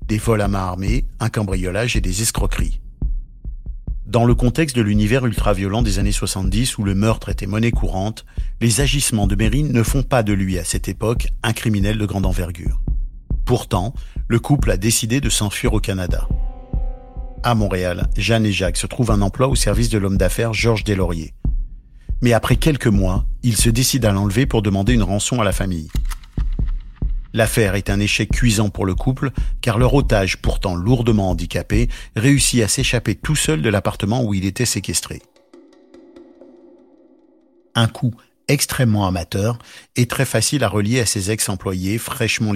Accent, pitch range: French, 100-125 Hz